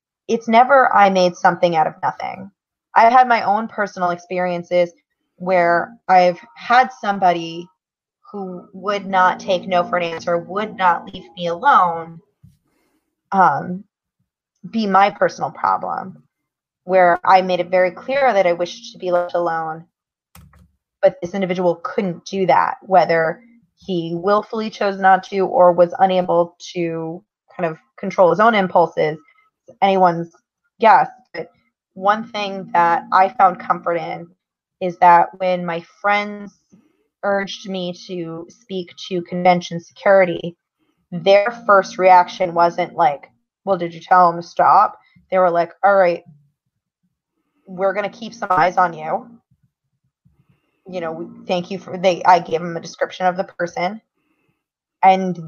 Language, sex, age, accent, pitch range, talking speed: English, female, 20-39, American, 175-200 Hz, 145 wpm